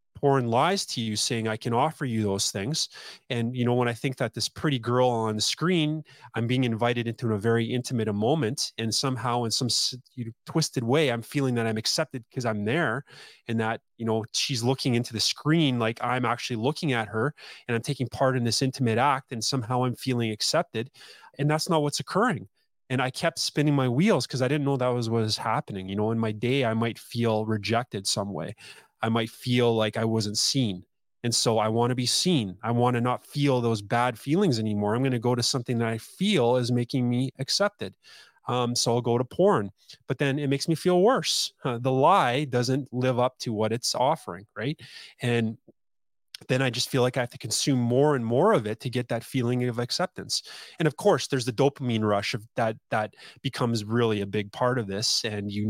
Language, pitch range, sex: English, 115-135 Hz, male